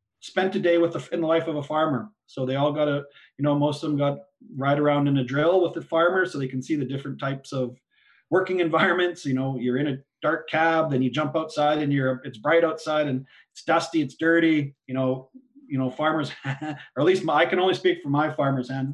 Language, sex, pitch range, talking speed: English, male, 130-165 Hz, 250 wpm